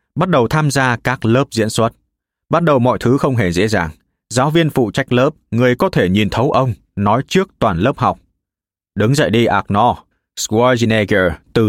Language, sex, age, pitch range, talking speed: Vietnamese, male, 20-39, 95-135 Hz, 195 wpm